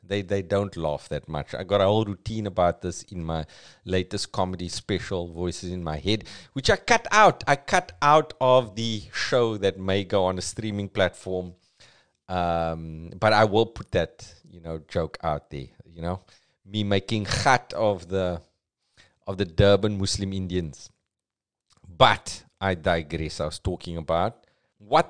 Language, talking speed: English, 165 wpm